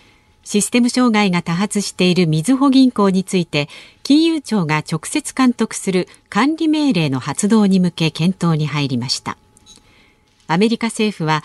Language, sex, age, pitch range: Japanese, female, 50-69, 155-240 Hz